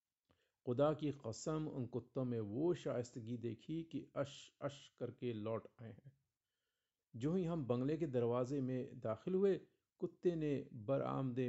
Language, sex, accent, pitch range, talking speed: Hindi, male, native, 120-160 Hz, 145 wpm